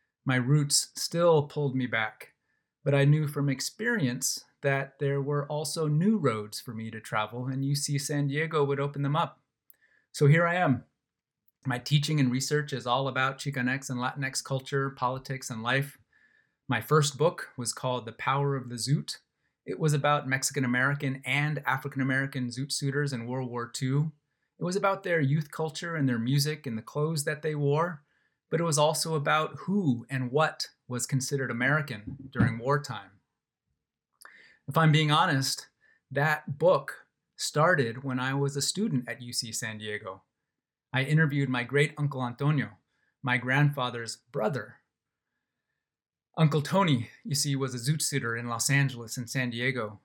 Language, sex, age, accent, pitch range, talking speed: English, male, 30-49, American, 125-150 Hz, 165 wpm